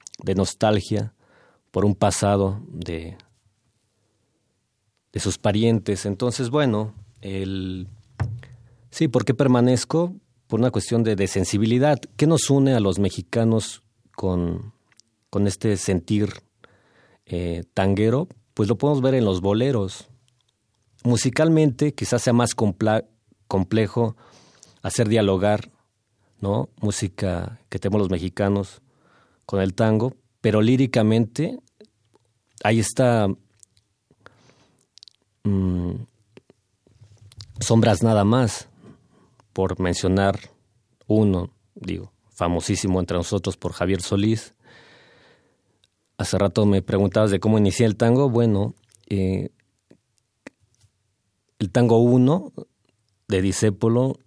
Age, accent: 40-59, Mexican